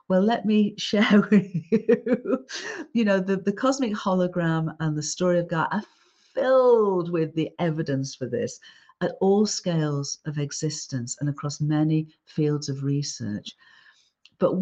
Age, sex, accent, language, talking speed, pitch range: 50-69, female, British, English, 150 wpm, 140-180 Hz